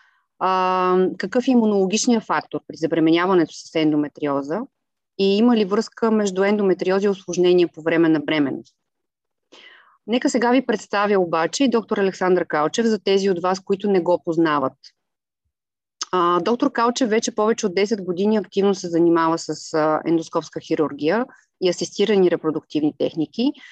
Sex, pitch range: female, 165-220 Hz